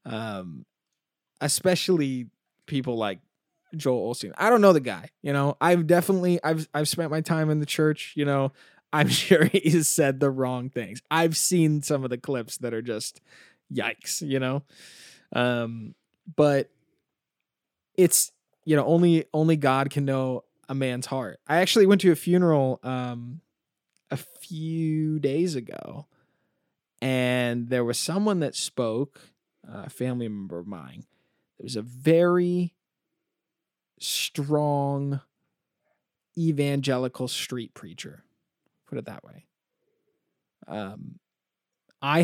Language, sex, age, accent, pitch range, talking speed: English, male, 20-39, American, 125-165 Hz, 135 wpm